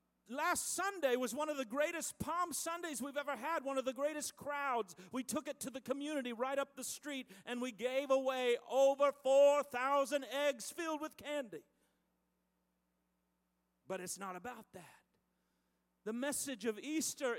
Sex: male